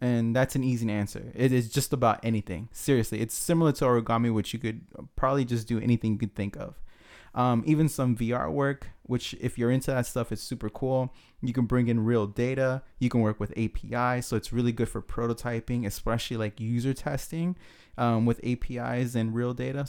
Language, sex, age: English, male, 20-39